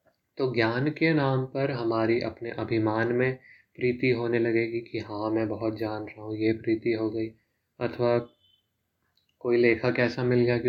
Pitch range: 110-120 Hz